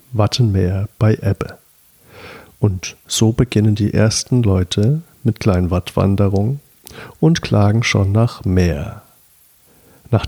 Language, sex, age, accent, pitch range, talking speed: German, male, 50-69, German, 100-125 Hz, 105 wpm